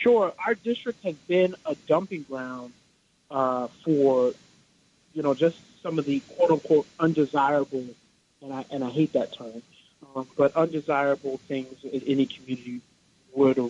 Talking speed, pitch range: 150 wpm, 135-160 Hz